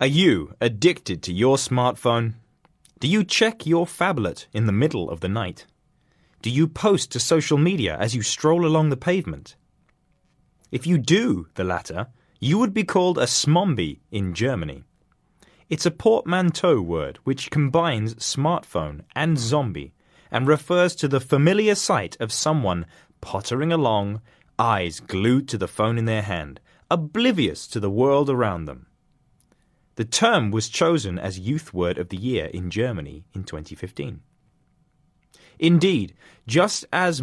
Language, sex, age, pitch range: Chinese, male, 20-39, 100-165 Hz